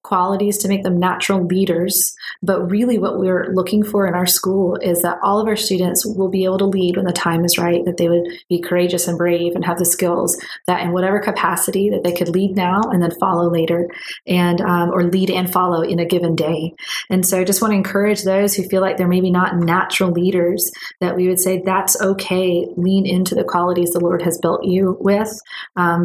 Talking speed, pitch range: 225 wpm, 180-195 Hz